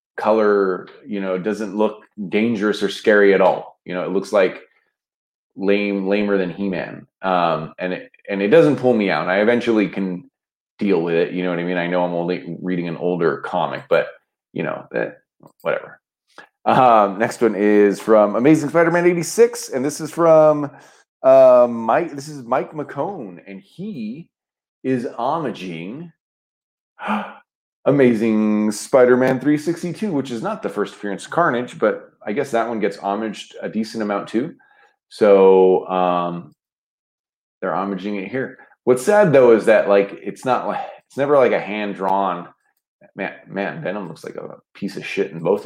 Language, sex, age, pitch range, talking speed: English, male, 30-49, 95-130 Hz, 170 wpm